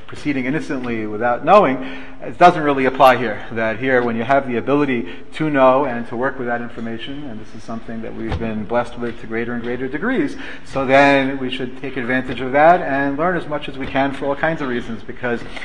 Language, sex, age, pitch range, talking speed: English, male, 40-59, 115-135 Hz, 225 wpm